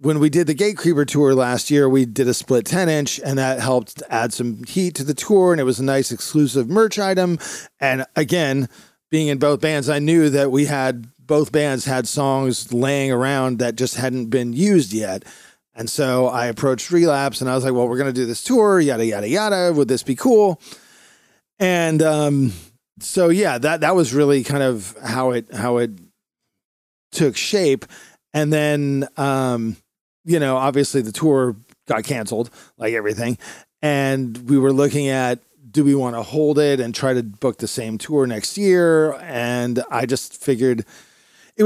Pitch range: 125-150 Hz